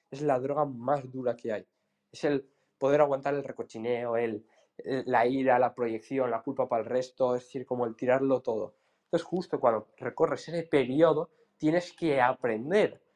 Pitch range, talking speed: 125-160 Hz, 180 wpm